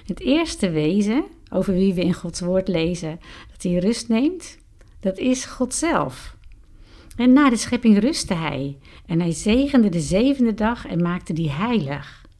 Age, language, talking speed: 50-69, Dutch, 165 wpm